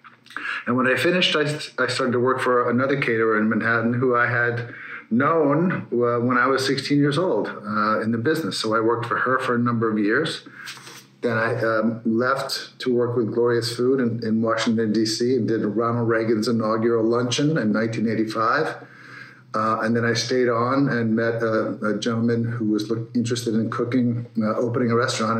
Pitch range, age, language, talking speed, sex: 110-125 Hz, 50-69, English, 190 wpm, male